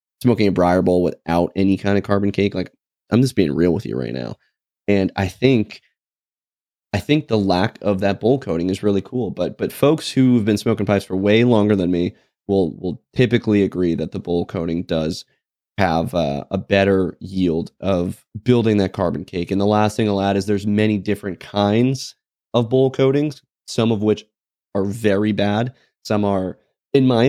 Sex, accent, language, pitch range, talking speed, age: male, American, English, 90-105 Hz, 195 wpm, 20-39